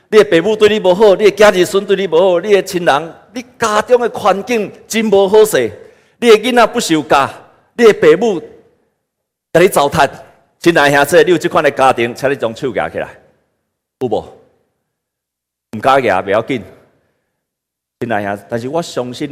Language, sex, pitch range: Chinese, male, 145-235 Hz